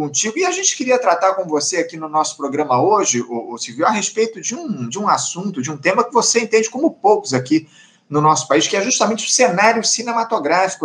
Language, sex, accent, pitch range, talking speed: Portuguese, male, Brazilian, 150-205 Hz, 220 wpm